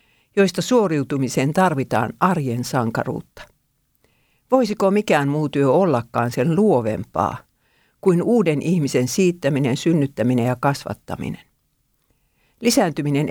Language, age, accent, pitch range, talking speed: Finnish, 60-79, native, 130-185 Hz, 90 wpm